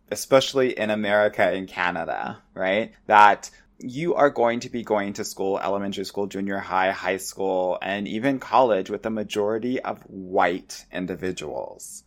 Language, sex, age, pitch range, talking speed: English, male, 20-39, 95-120 Hz, 150 wpm